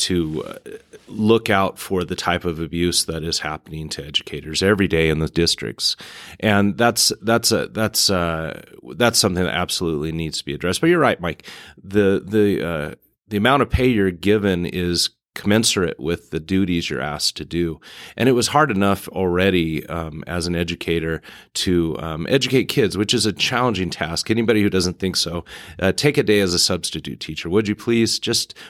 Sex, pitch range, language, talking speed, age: male, 85-105 Hz, English, 190 wpm, 30-49